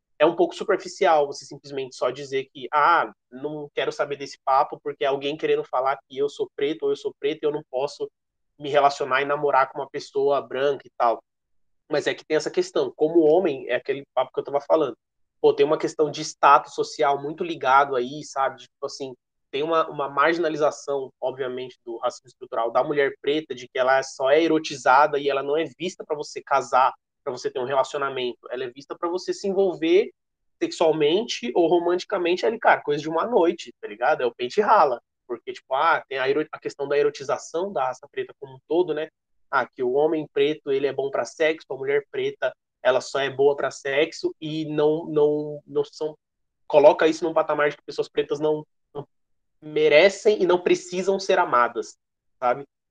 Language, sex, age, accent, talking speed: Portuguese, male, 20-39, Brazilian, 200 wpm